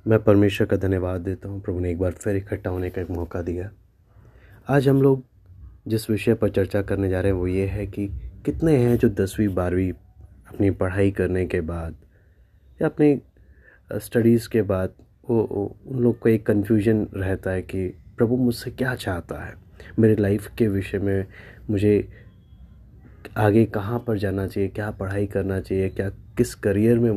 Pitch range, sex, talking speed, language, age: 95-120 Hz, male, 175 wpm, Hindi, 20-39